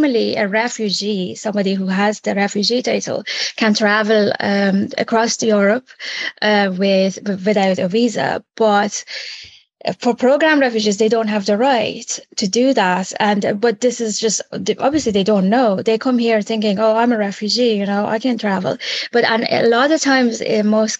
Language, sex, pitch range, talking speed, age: English, female, 200-230 Hz, 175 wpm, 20-39